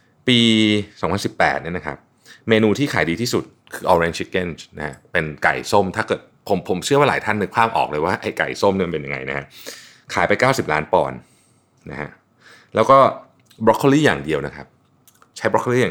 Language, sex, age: Thai, male, 20-39